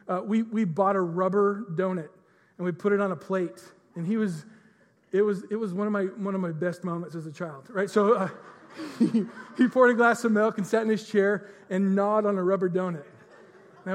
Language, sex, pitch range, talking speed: English, male, 175-215 Hz, 230 wpm